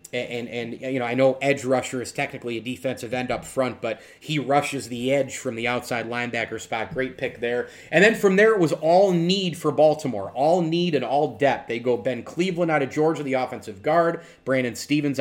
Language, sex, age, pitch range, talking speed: English, male, 30-49, 120-140 Hz, 220 wpm